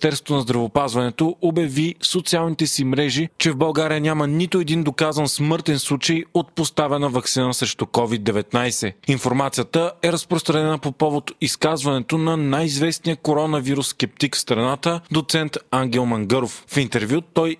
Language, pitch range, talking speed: Bulgarian, 130-165 Hz, 135 wpm